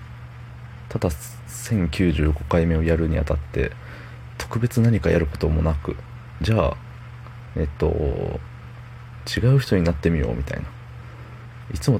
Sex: male